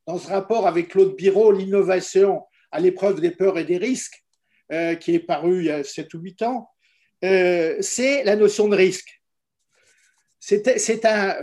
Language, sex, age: French, male, 50-69